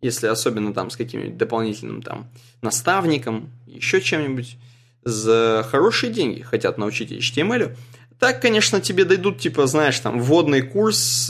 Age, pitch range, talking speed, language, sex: 20-39, 120-150 Hz, 135 wpm, Russian, male